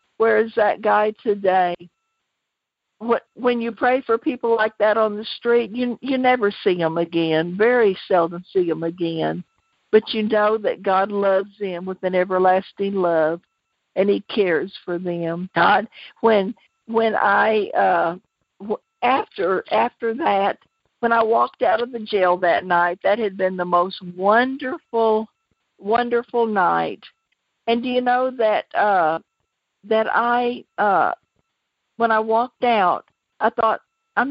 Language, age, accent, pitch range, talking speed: English, 50-69, American, 190-240 Hz, 145 wpm